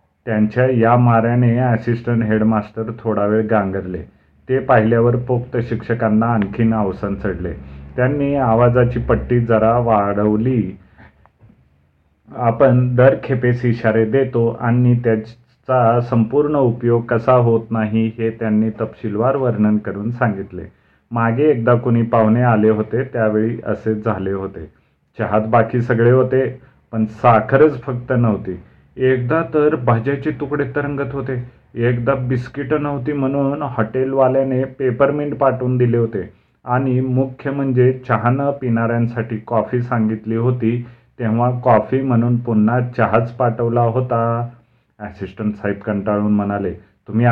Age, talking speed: 30-49, 115 wpm